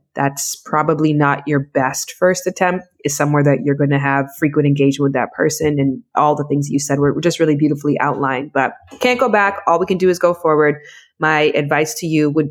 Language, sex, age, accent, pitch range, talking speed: English, female, 20-39, American, 145-180 Hz, 225 wpm